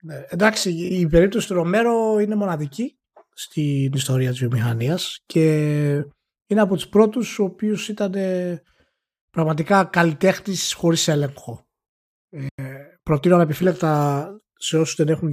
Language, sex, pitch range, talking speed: Greek, male, 140-180 Hz, 115 wpm